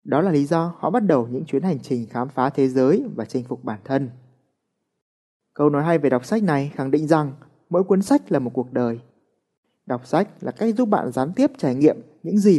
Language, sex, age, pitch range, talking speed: Vietnamese, male, 30-49, 125-180 Hz, 235 wpm